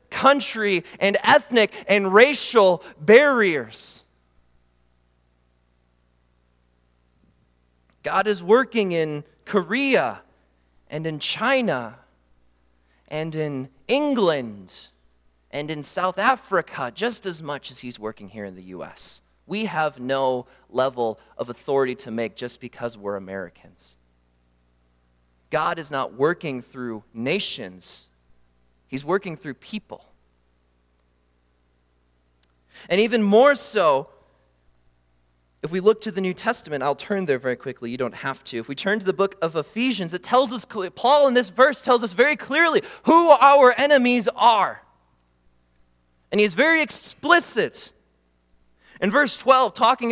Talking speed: 125 wpm